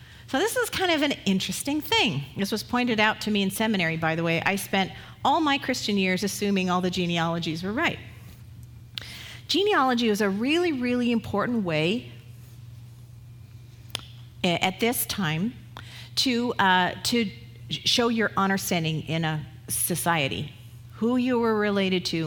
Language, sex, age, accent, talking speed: Italian, female, 40-59, American, 150 wpm